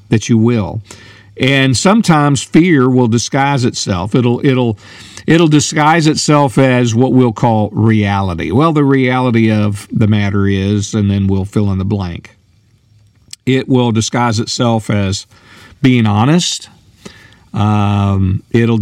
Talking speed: 135 wpm